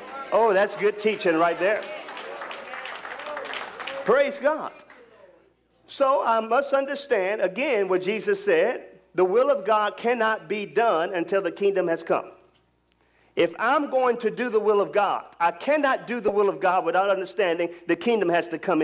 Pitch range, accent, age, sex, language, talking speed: 200-285 Hz, American, 40-59, male, English, 160 wpm